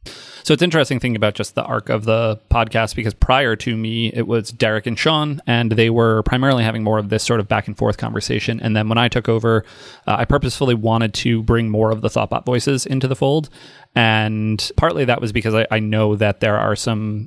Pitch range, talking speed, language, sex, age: 110-120 Hz, 230 wpm, English, male, 30-49